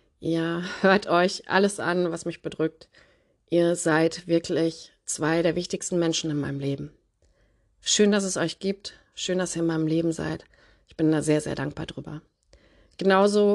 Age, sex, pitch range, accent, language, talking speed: 30-49, female, 165-195 Hz, German, German, 170 wpm